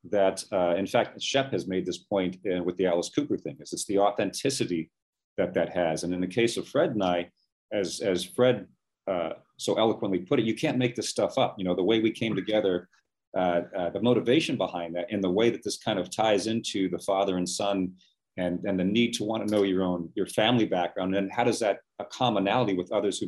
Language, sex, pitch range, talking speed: English, male, 90-110 Hz, 235 wpm